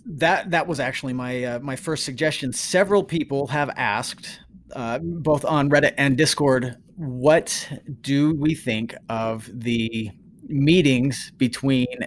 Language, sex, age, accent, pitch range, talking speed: English, male, 30-49, American, 125-160 Hz, 135 wpm